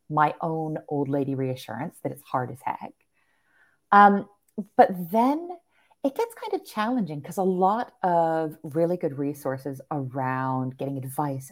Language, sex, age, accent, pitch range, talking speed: English, female, 30-49, American, 145-205 Hz, 145 wpm